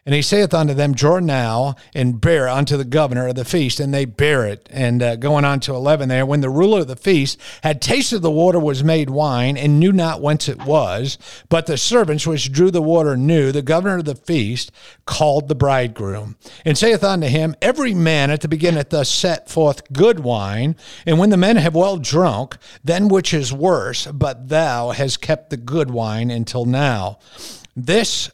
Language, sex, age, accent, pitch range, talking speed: English, male, 50-69, American, 125-160 Hz, 205 wpm